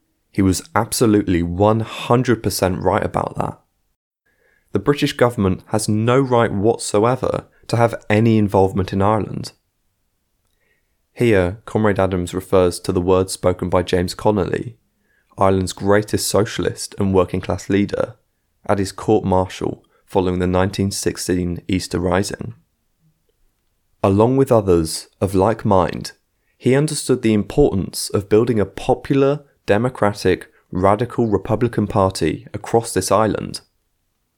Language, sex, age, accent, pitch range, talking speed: English, male, 20-39, British, 95-120 Hz, 115 wpm